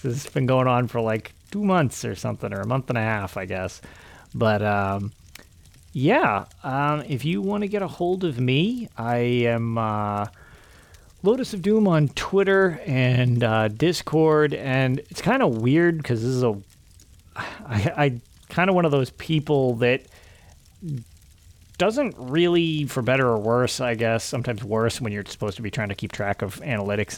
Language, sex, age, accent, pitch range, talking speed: English, male, 30-49, American, 110-155 Hz, 175 wpm